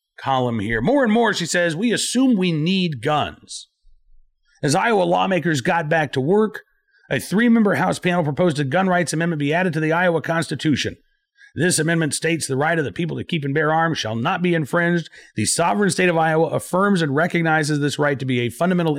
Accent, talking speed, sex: American, 205 wpm, male